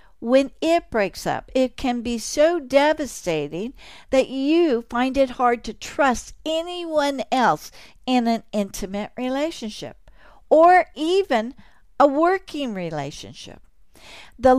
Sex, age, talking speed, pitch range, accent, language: female, 60-79, 115 wpm, 215-290 Hz, American, English